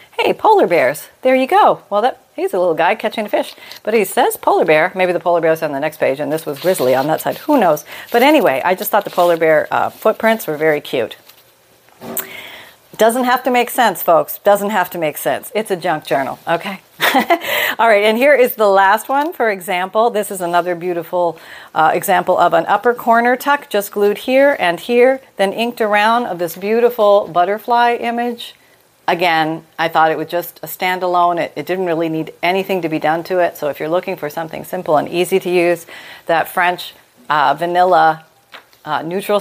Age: 40-59